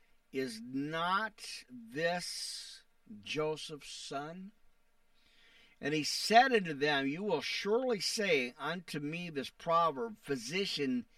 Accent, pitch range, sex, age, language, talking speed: American, 140-185 Hz, male, 50-69, English, 100 wpm